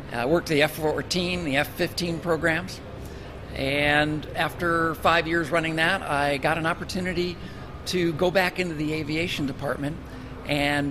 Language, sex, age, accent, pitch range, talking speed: English, male, 50-69, American, 135-170 Hz, 140 wpm